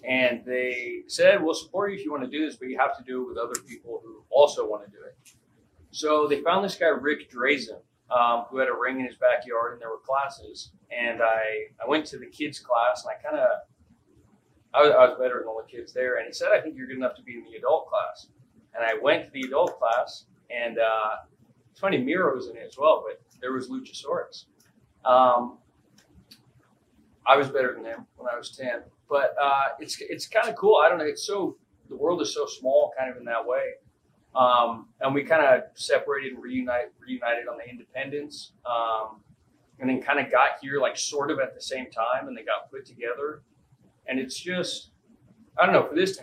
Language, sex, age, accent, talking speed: English, male, 30-49, American, 225 wpm